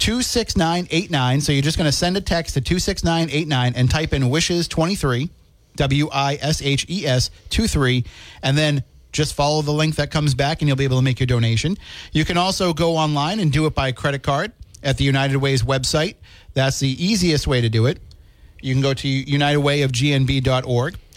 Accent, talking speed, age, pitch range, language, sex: American, 175 wpm, 40-59, 130-160 Hz, English, male